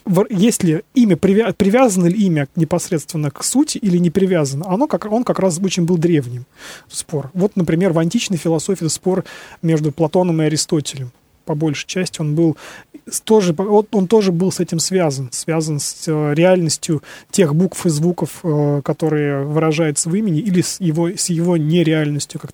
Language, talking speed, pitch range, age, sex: Russian, 150 wpm, 155-195 Hz, 20-39, male